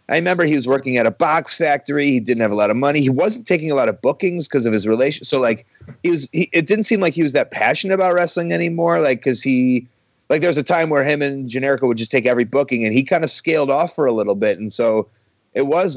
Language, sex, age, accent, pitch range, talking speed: English, male, 30-49, American, 120-160 Hz, 280 wpm